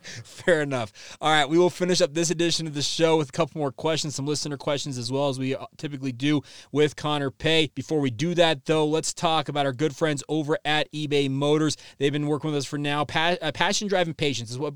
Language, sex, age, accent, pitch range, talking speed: English, male, 20-39, American, 140-175 Hz, 240 wpm